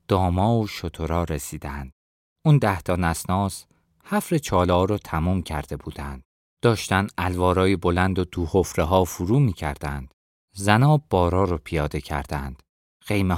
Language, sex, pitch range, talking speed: Persian, male, 75-100 Hz, 120 wpm